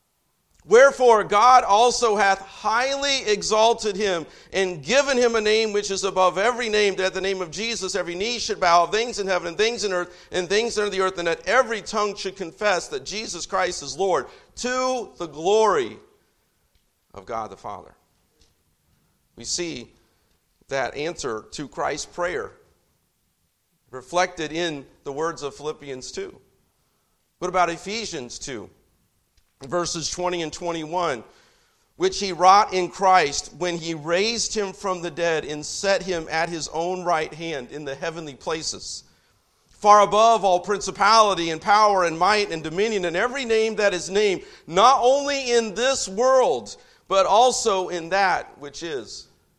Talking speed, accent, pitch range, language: 155 wpm, American, 165-220 Hz, English